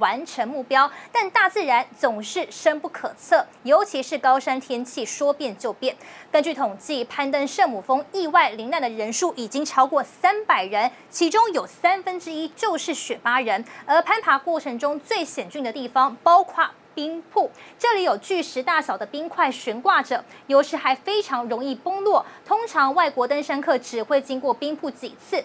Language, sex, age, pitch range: Chinese, female, 20-39, 260-350 Hz